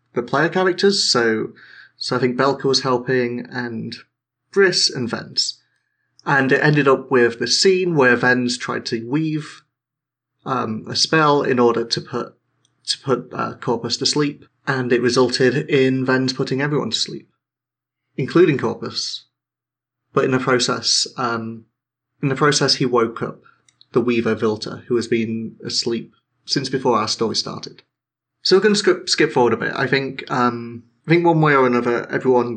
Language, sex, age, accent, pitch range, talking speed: English, male, 30-49, British, 120-140 Hz, 170 wpm